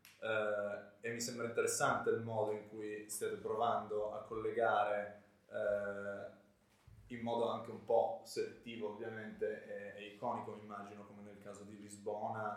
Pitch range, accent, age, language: 100-130 Hz, native, 20-39, Italian